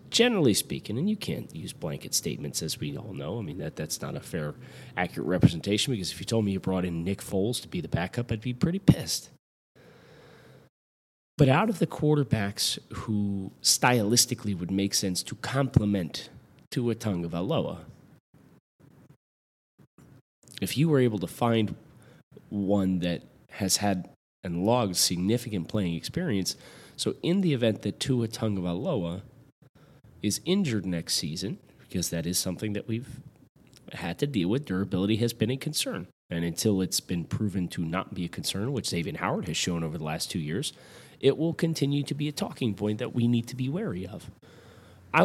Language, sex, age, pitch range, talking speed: English, male, 30-49, 95-140 Hz, 170 wpm